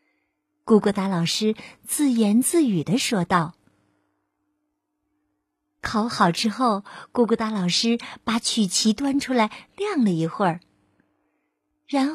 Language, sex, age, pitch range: Chinese, female, 50-69, 200-285 Hz